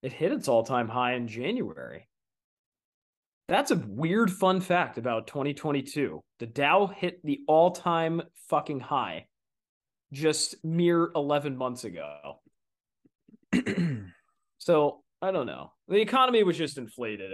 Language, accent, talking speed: English, American, 120 wpm